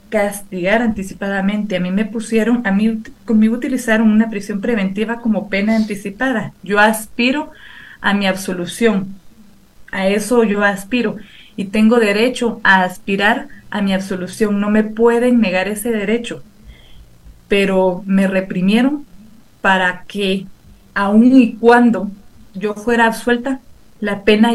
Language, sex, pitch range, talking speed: Spanish, female, 200-230 Hz, 125 wpm